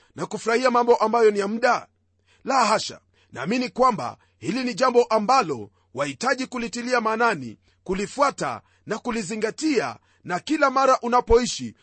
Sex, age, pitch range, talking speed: male, 40-59, 210-250 Hz, 125 wpm